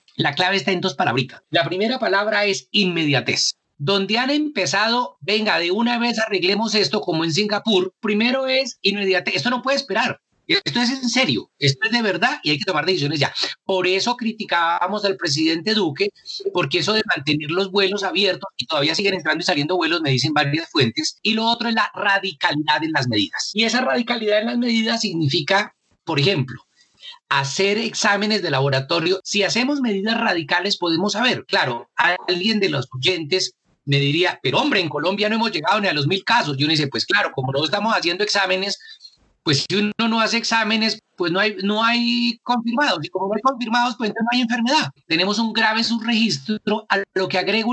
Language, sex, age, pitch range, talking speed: Spanish, male, 40-59, 175-225 Hz, 195 wpm